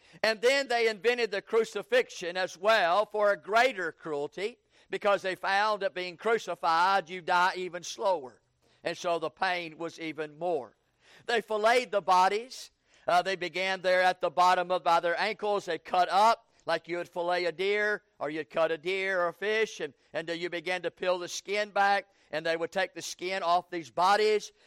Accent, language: American, English